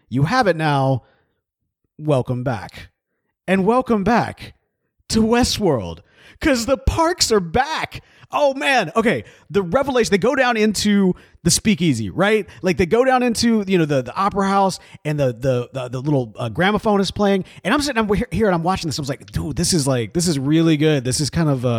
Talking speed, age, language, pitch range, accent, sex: 200 wpm, 30-49, English, 140-210 Hz, American, male